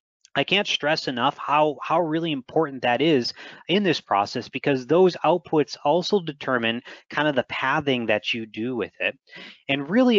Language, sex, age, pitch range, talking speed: English, male, 30-49, 120-145 Hz, 170 wpm